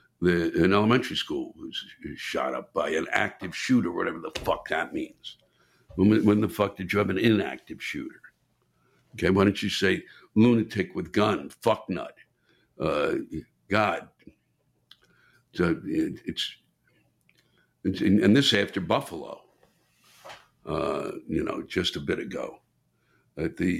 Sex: male